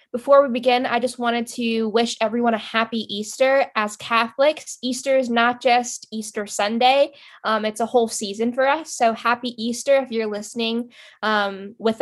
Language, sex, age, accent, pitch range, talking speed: English, female, 10-29, American, 200-245 Hz, 175 wpm